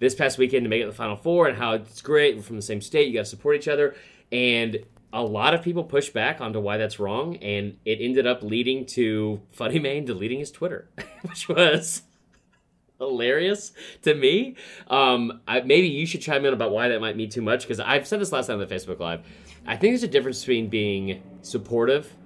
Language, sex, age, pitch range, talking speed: English, male, 30-49, 100-135 Hz, 225 wpm